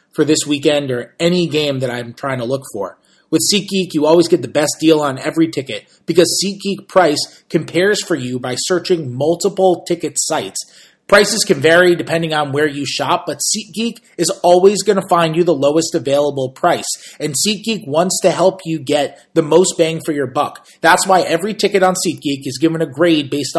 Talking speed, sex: 200 wpm, male